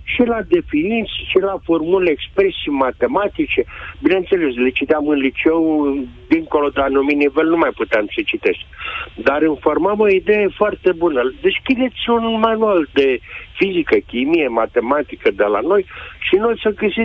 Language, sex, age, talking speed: Romanian, male, 50-69, 150 wpm